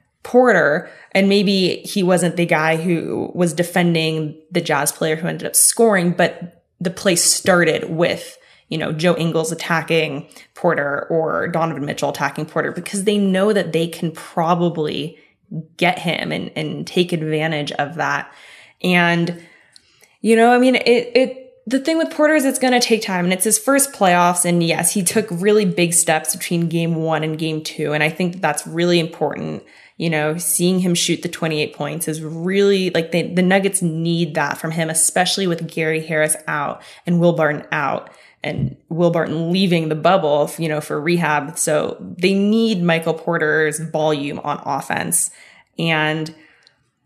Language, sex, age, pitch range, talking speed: English, female, 20-39, 160-195 Hz, 170 wpm